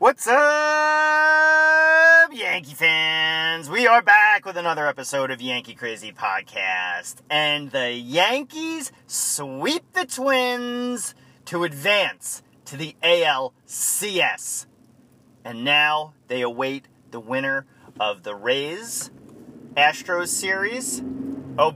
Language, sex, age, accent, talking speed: English, male, 30-49, American, 100 wpm